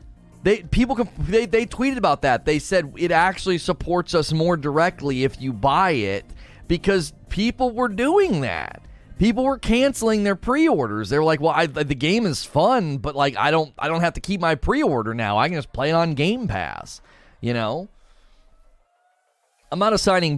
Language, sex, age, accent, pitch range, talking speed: English, male, 30-49, American, 115-170 Hz, 185 wpm